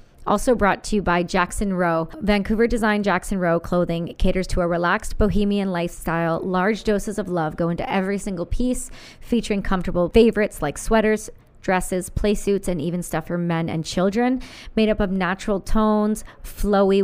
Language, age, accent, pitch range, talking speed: English, 40-59, American, 180-210 Hz, 170 wpm